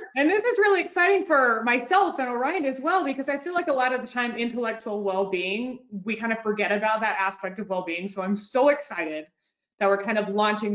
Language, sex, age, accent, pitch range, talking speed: English, female, 30-49, American, 200-275 Hz, 225 wpm